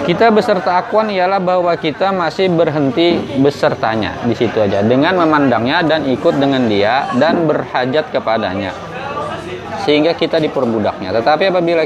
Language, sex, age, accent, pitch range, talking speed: Indonesian, male, 20-39, native, 140-175 Hz, 125 wpm